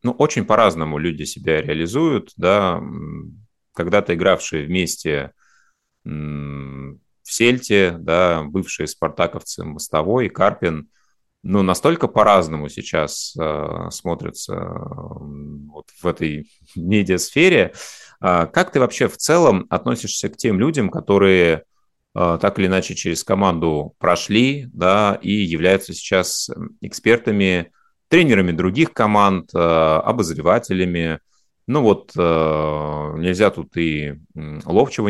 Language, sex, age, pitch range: Russian, male, 30-49, 75-100 Hz